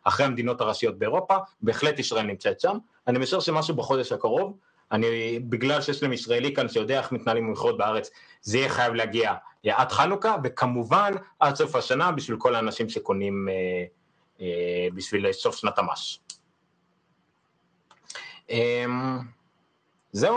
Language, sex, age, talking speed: Hebrew, male, 30-49, 140 wpm